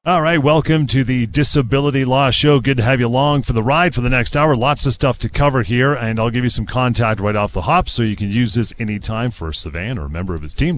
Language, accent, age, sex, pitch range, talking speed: English, American, 40-59, male, 100-125 Hz, 285 wpm